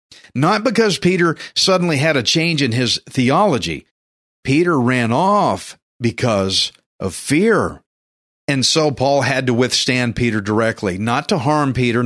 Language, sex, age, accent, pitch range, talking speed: English, male, 50-69, American, 120-165 Hz, 140 wpm